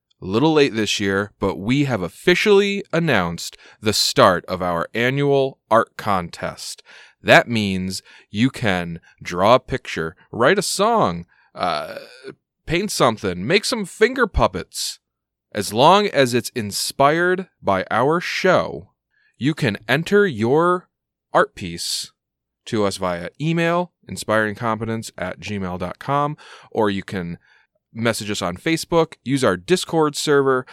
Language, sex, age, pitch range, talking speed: English, male, 20-39, 100-155 Hz, 130 wpm